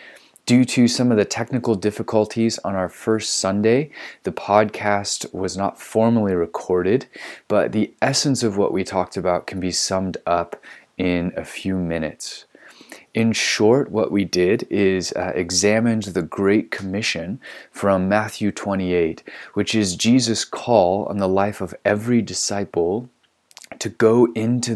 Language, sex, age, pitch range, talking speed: English, male, 30-49, 95-115 Hz, 145 wpm